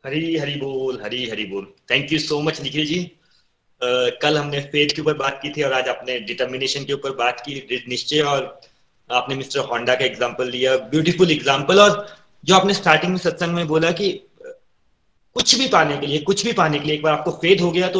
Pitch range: 140-185 Hz